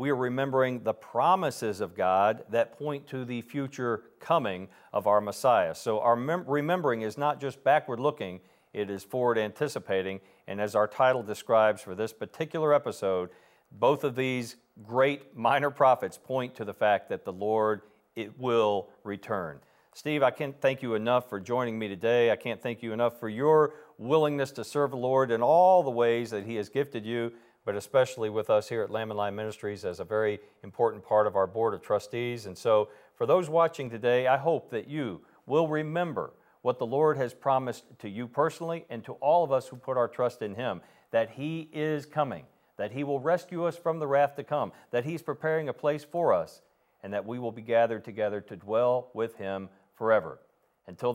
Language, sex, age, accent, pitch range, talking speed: English, male, 50-69, American, 110-145 Hz, 195 wpm